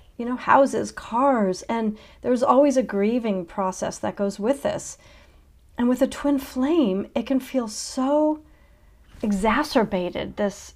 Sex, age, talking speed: female, 40-59, 140 wpm